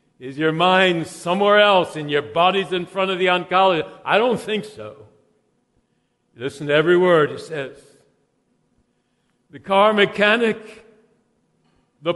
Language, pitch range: English, 150-185 Hz